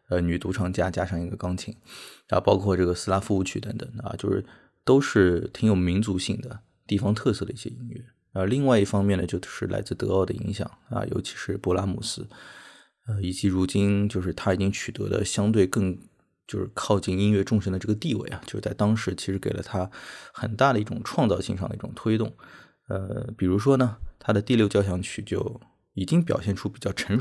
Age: 20-39